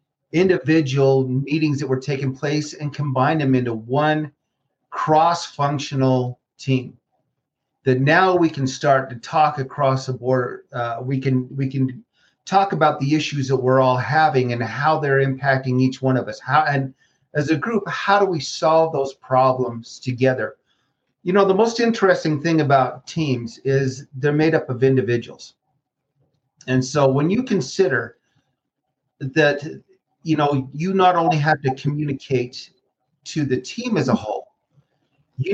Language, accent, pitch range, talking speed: English, American, 130-155 Hz, 155 wpm